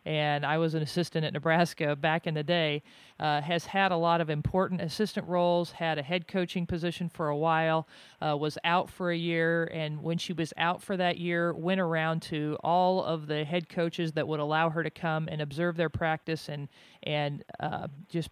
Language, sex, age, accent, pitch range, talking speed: English, male, 40-59, American, 155-185 Hz, 210 wpm